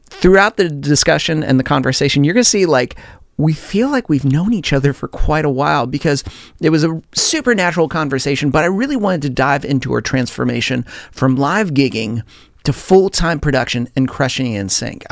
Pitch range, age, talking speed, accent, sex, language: 130-180 Hz, 40-59, 190 wpm, American, male, English